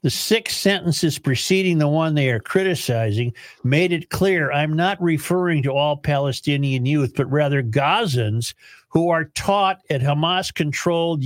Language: English